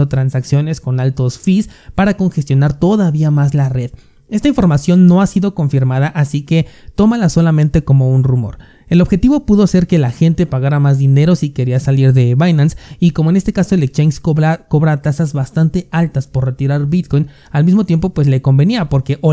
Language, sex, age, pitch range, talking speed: Spanish, male, 30-49, 135-170 Hz, 190 wpm